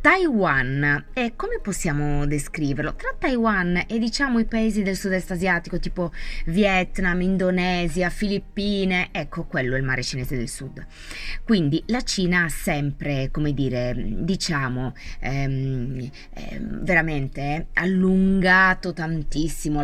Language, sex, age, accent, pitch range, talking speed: Italian, female, 20-39, native, 145-185 Hz, 120 wpm